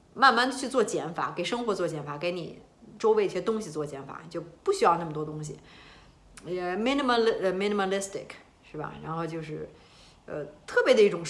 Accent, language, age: native, Chinese, 30-49